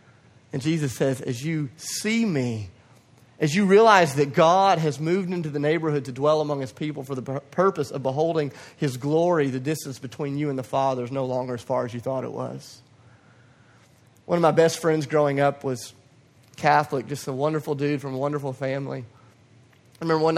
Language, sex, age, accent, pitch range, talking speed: English, male, 30-49, American, 130-160 Hz, 195 wpm